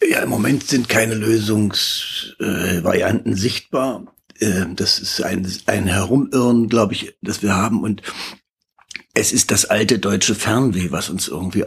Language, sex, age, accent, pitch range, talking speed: German, male, 60-79, German, 90-110 Hz, 140 wpm